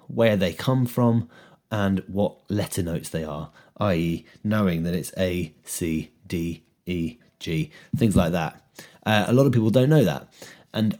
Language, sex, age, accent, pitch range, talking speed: English, male, 30-49, British, 90-110 Hz, 170 wpm